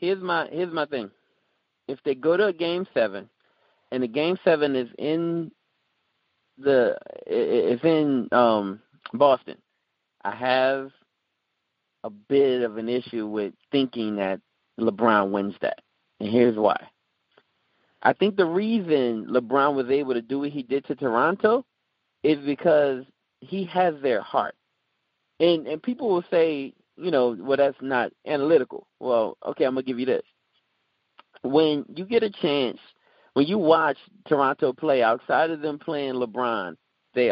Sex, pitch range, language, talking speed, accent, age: male, 125-175 Hz, English, 150 wpm, American, 30-49